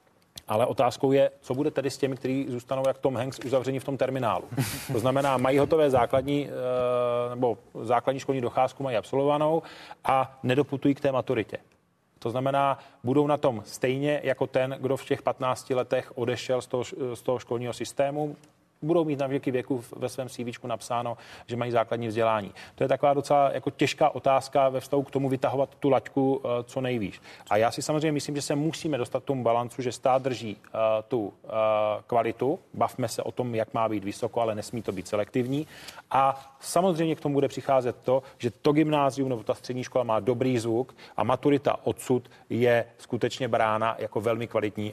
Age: 30-49